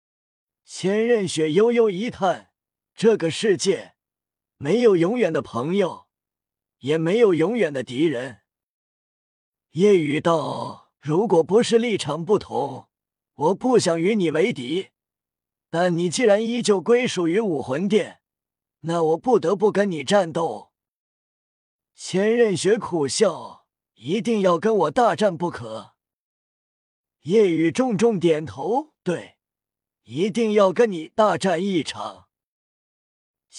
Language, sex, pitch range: Chinese, male, 160-220 Hz